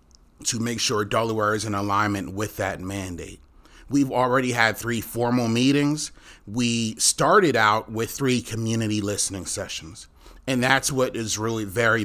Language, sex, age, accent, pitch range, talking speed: English, male, 30-49, American, 105-130 Hz, 150 wpm